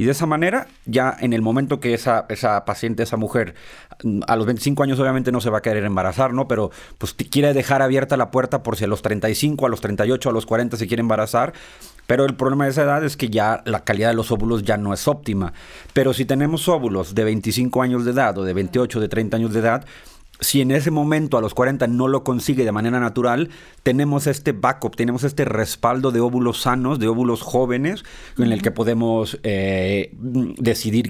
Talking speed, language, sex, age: 220 wpm, Spanish, male, 30-49